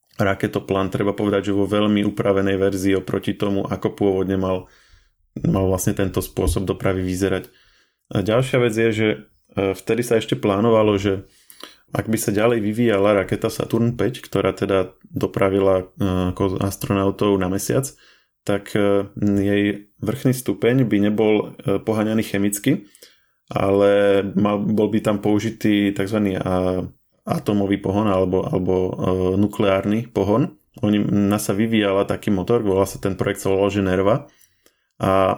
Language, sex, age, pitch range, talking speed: Slovak, male, 20-39, 95-105 Hz, 130 wpm